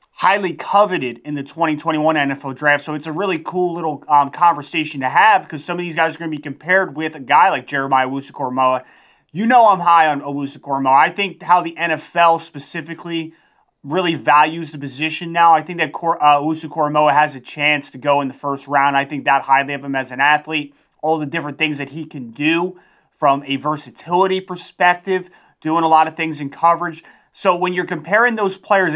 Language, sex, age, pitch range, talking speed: English, male, 30-49, 145-175 Hz, 200 wpm